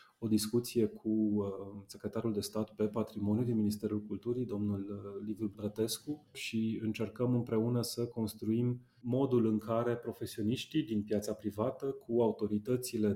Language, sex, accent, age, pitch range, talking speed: Romanian, male, native, 30-49, 105-120 Hz, 130 wpm